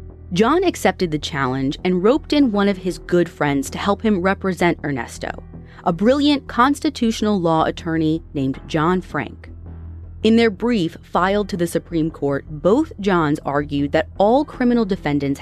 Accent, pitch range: American, 145-230 Hz